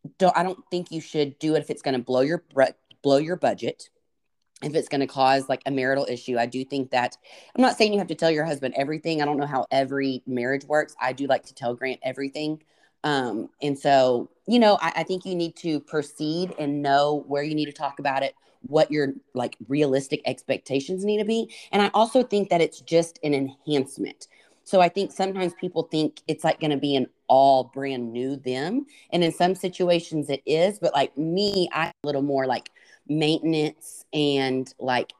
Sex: female